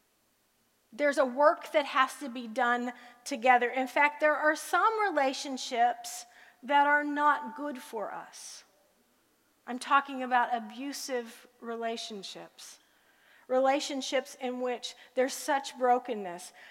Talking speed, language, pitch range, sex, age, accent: 115 wpm, English, 230-275 Hz, female, 40-59, American